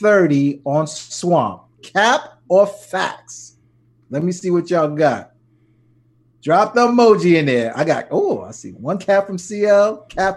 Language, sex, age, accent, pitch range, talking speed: English, male, 30-49, American, 130-200 Hz, 155 wpm